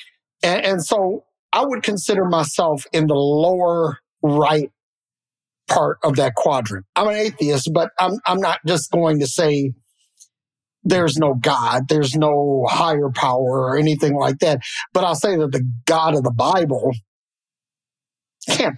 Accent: American